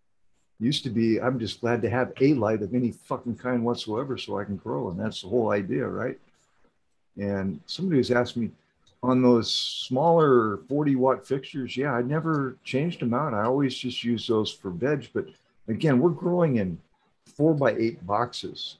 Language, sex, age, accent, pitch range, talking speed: English, male, 50-69, American, 100-130 Hz, 185 wpm